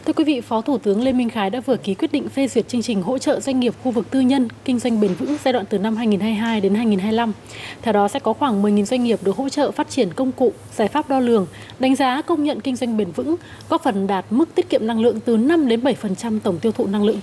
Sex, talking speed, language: female, 280 wpm, Vietnamese